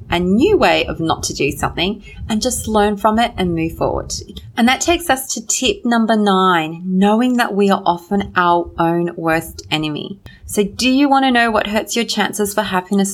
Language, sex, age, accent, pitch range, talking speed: English, female, 30-49, Australian, 175-220 Hz, 205 wpm